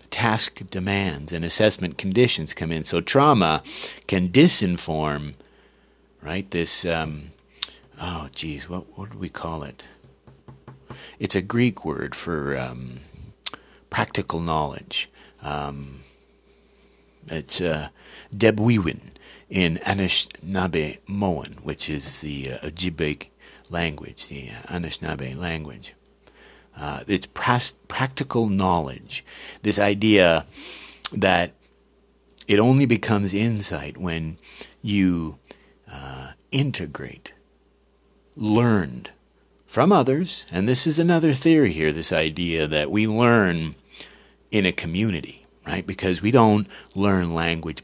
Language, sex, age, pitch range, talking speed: English, male, 50-69, 80-105 Hz, 105 wpm